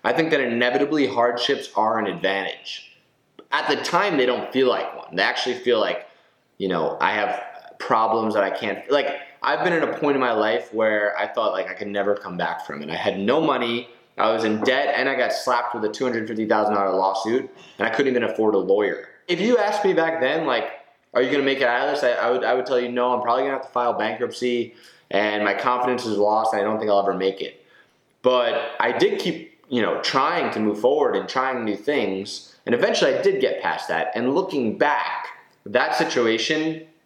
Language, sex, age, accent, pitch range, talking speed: English, male, 20-39, American, 110-140 Hz, 225 wpm